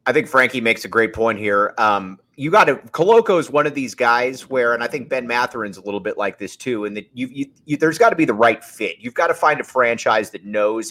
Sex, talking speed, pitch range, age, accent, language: male, 260 wpm, 115-170 Hz, 30-49, American, English